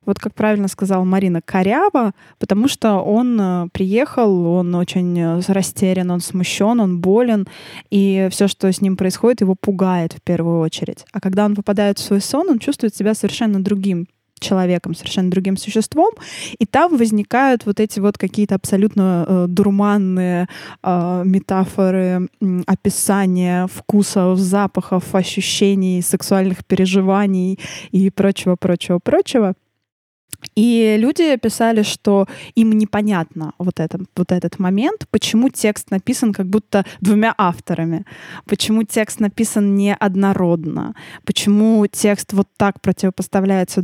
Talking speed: 120 wpm